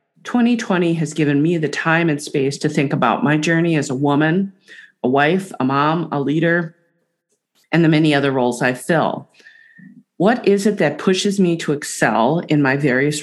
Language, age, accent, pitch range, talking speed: English, 40-59, American, 140-180 Hz, 180 wpm